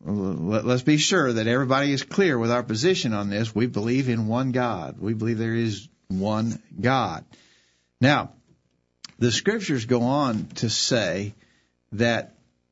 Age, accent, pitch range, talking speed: 50-69, American, 110-135 Hz, 145 wpm